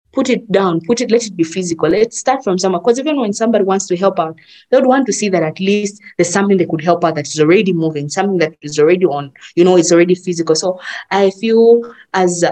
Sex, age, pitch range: female, 20-39, 165-195 Hz